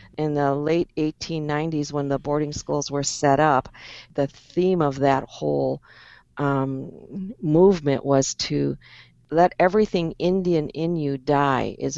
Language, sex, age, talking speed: English, female, 50-69, 135 wpm